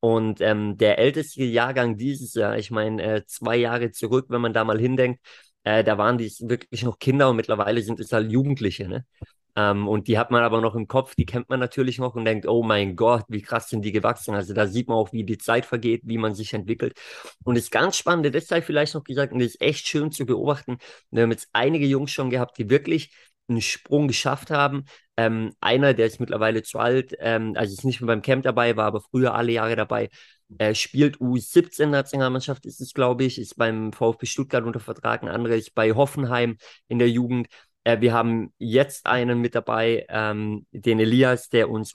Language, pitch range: German, 110-125 Hz